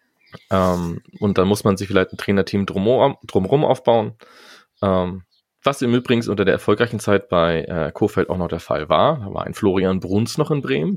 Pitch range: 90-105 Hz